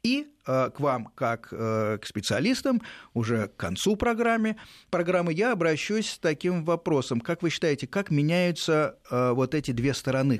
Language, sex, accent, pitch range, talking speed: Russian, male, native, 115-165 Hz, 140 wpm